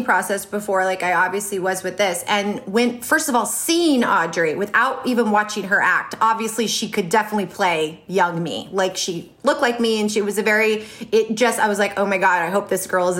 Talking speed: 225 wpm